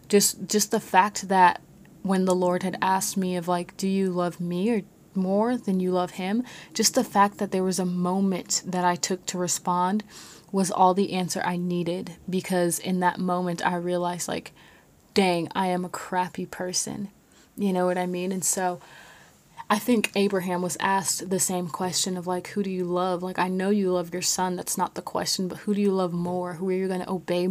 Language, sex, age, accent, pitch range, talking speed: English, female, 20-39, American, 180-200 Hz, 215 wpm